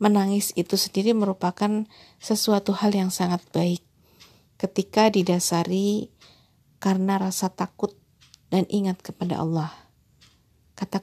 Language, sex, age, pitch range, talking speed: Indonesian, female, 50-69, 180-215 Hz, 105 wpm